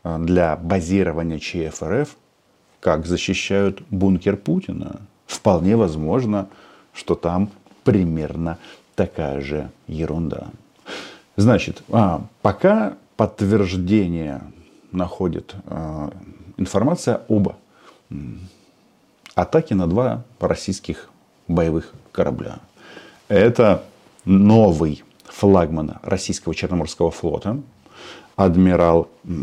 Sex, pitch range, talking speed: male, 85-100 Hz, 70 wpm